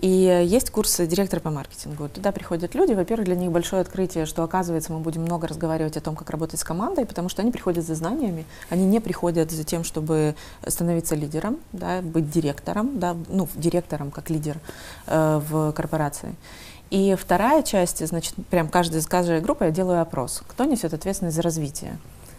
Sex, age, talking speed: female, 30-49, 180 wpm